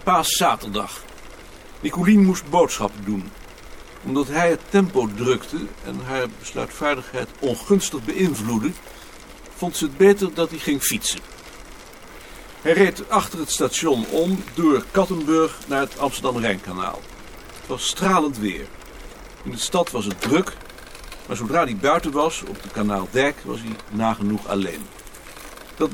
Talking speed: 135 wpm